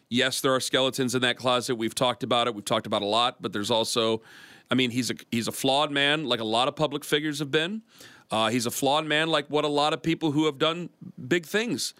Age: 40-59